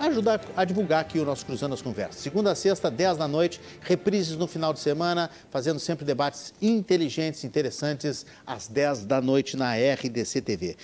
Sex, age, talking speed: male, 50-69, 170 wpm